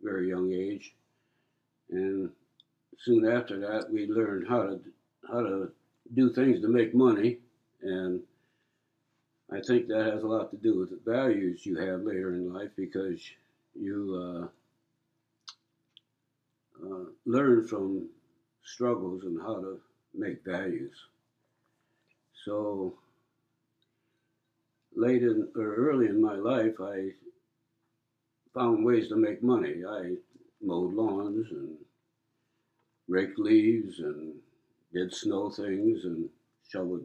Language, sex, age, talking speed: English, male, 60-79, 120 wpm